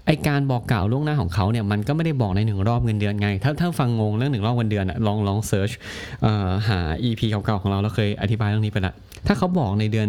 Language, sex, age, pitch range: Thai, male, 30-49, 100-125 Hz